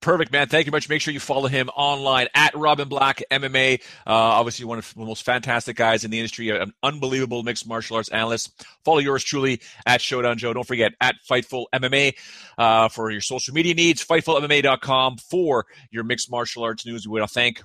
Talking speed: 205 wpm